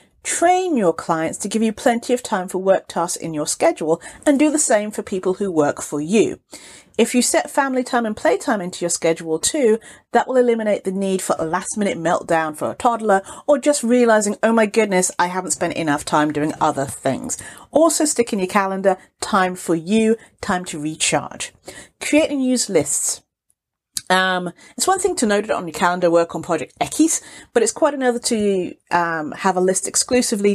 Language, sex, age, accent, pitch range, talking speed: English, female, 40-59, British, 170-240 Hz, 200 wpm